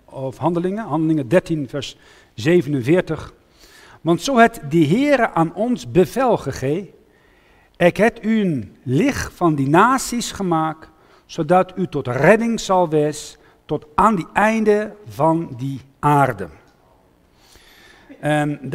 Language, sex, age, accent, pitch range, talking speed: English, male, 50-69, Dutch, 150-200 Hz, 120 wpm